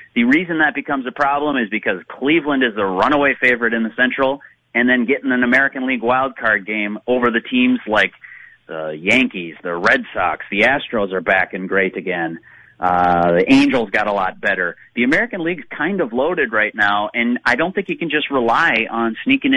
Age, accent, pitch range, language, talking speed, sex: 30-49, American, 115-140 Hz, English, 200 wpm, male